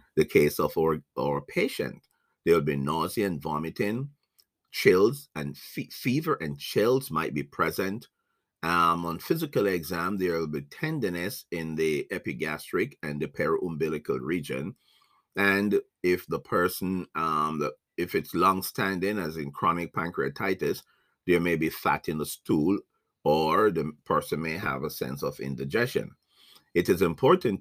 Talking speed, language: 150 wpm, English